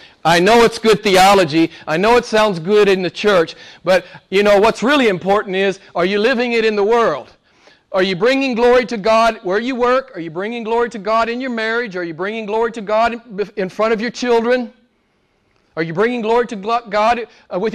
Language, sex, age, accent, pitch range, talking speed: English, male, 40-59, American, 165-230 Hz, 215 wpm